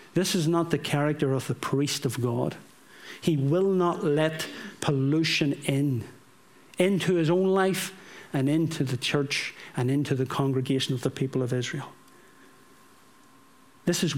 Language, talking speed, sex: English, 150 wpm, male